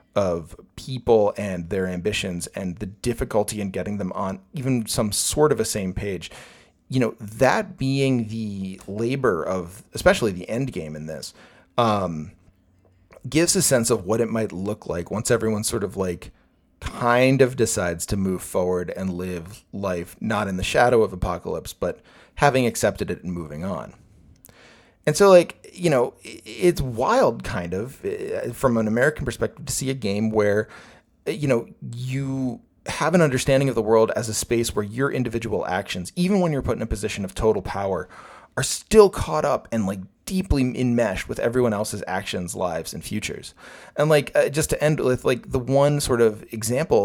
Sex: male